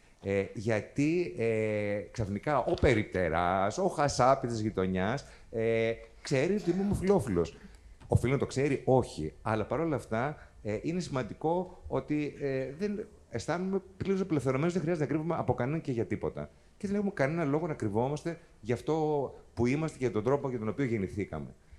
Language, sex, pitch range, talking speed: Greek, male, 95-140 Hz, 165 wpm